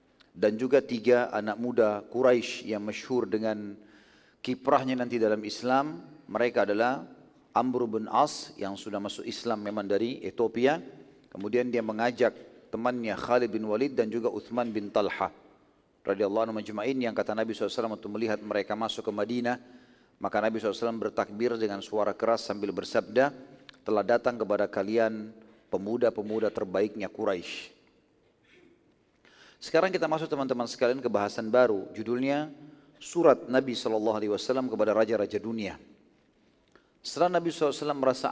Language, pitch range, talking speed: Indonesian, 110-125 Hz, 130 wpm